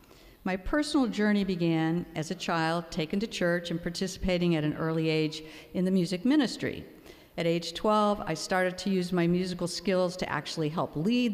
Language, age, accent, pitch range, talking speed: English, 50-69, American, 165-200 Hz, 180 wpm